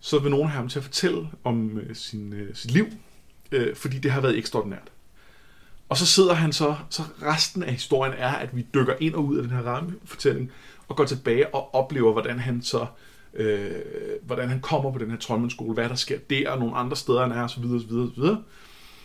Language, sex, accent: Danish, male, native